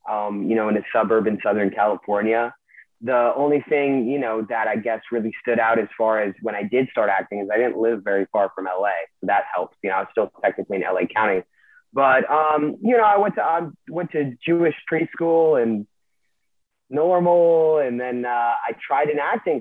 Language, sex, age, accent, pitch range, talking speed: English, male, 20-39, American, 105-135 Hz, 210 wpm